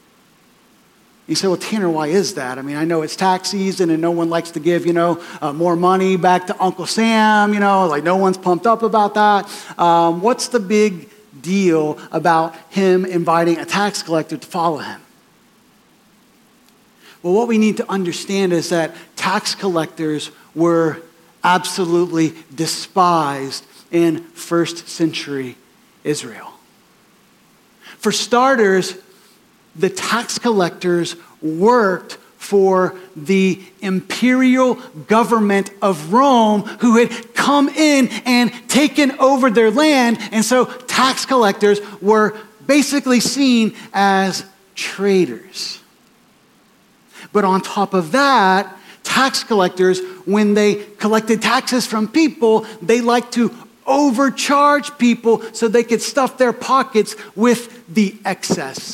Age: 40-59